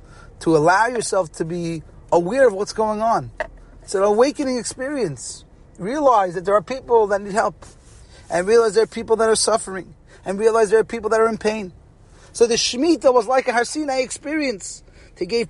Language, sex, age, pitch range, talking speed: English, male, 30-49, 145-225 Hz, 190 wpm